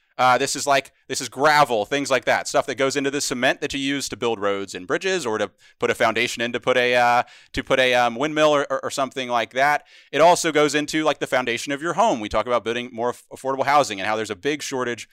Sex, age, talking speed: male, 30-49, 265 wpm